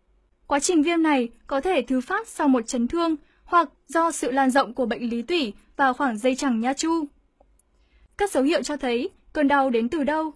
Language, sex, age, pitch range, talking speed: Vietnamese, female, 10-29, 260-330 Hz, 215 wpm